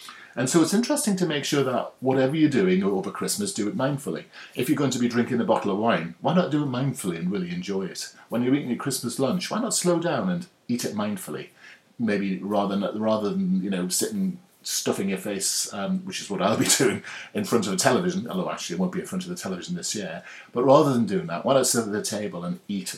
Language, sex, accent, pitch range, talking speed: English, male, British, 120-190 Hz, 250 wpm